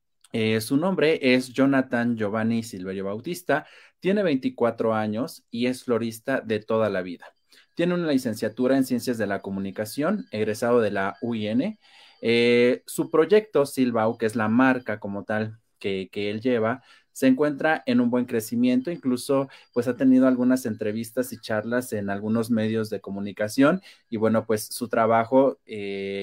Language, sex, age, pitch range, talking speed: Spanish, male, 30-49, 110-135 Hz, 160 wpm